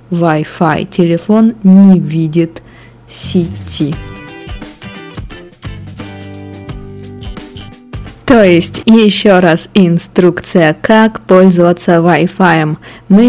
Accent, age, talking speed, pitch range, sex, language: native, 20-39, 65 wpm, 165-210 Hz, female, Russian